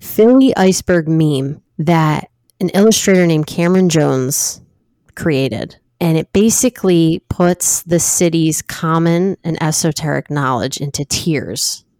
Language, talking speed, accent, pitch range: English, 110 wpm, American, 145-180 Hz